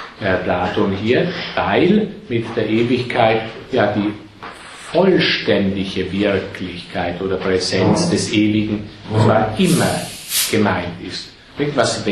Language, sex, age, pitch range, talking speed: German, male, 50-69, 100-125 Hz, 100 wpm